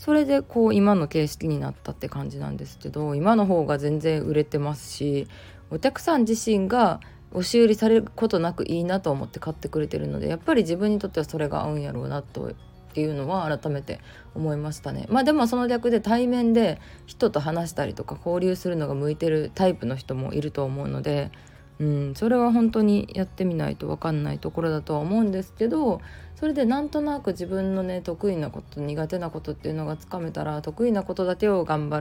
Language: Japanese